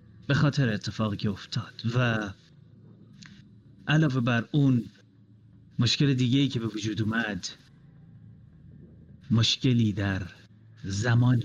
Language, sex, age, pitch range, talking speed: Persian, male, 30-49, 110-140 Hz, 95 wpm